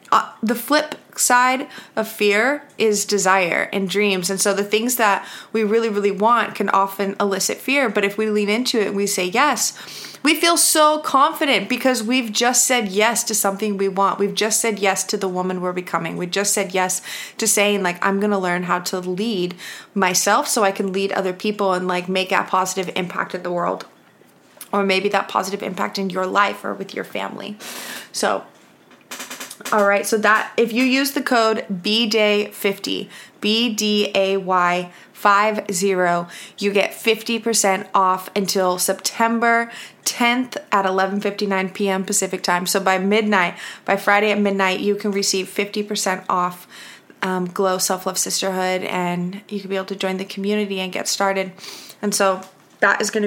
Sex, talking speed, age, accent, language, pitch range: female, 175 wpm, 20-39, American, English, 190-215 Hz